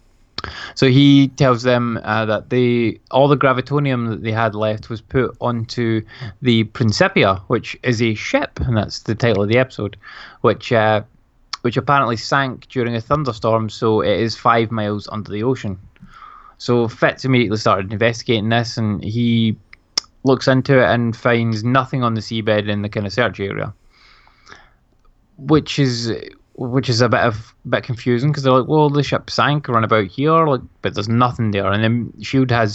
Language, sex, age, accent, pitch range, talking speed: English, male, 20-39, British, 110-130 Hz, 180 wpm